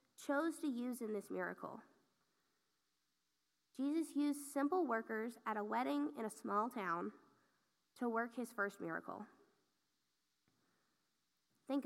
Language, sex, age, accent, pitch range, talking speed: English, female, 20-39, American, 210-275 Hz, 115 wpm